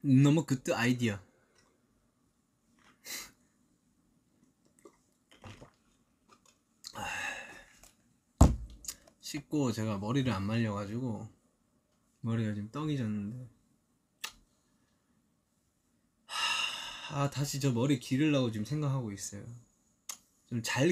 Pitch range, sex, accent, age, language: 110-155 Hz, male, native, 20-39, Korean